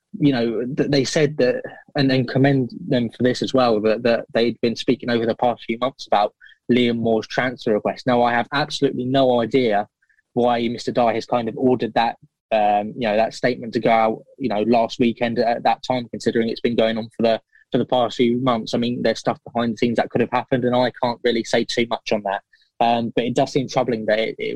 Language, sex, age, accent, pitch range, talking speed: English, male, 20-39, British, 115-130 Hz, 240 wpm